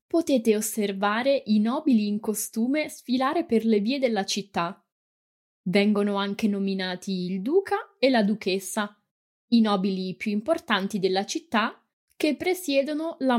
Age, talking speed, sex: 20-39, 130 wpm, female